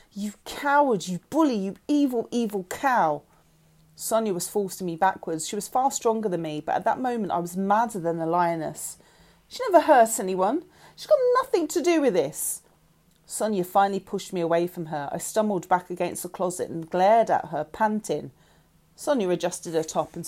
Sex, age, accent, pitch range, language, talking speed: female, 40-59, British, 170-225 Hz, English, 185 wpm